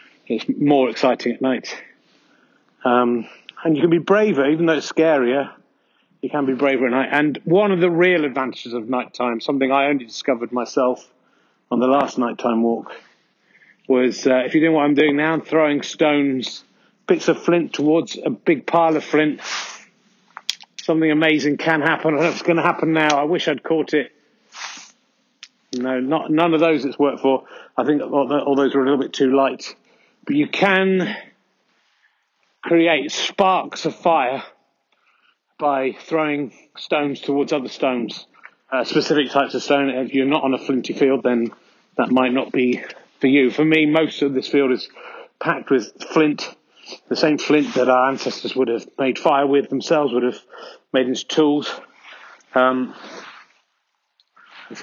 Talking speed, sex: 170 wpm, male